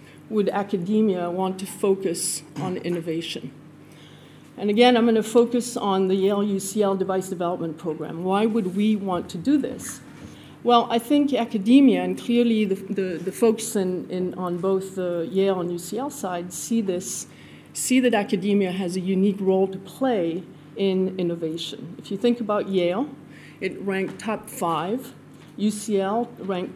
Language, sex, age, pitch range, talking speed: English, female, 40-59, 180-220 Hz, 155 wpm